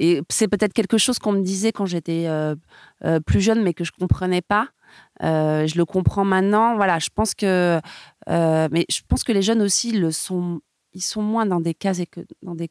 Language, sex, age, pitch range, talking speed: French, female, 30-49, 160-205 Hz, 230 wpm